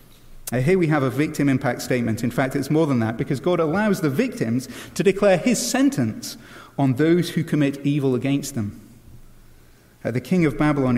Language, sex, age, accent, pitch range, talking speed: English, male, 30-49, British, 125-160 Hz, 190 wpm